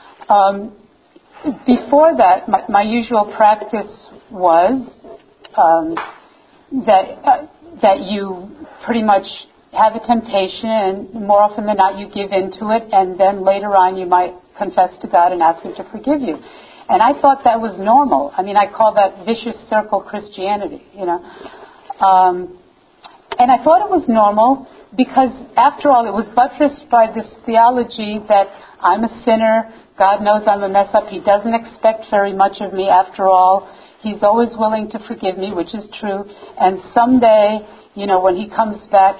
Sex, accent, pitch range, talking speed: female, American, 195-245 Hz, 170 wpm